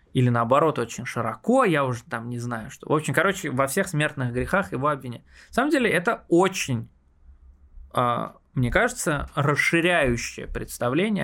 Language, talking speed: Russian, 160 wpm